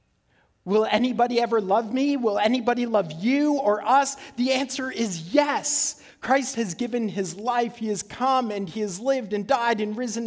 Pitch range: 145-205 Hz